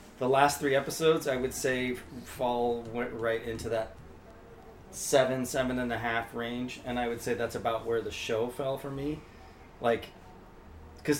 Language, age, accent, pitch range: English, 30-49, American, 105-130 Hz